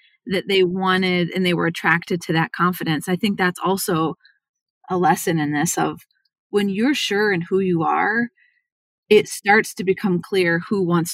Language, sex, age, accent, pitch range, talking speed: English, female, 30-49, American, 170-205 Hz, 180 wpm